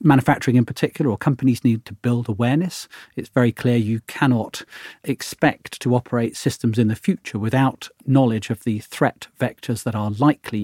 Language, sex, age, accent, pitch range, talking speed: English, male, 40-59, British, 115-140 Hz, 170 wpm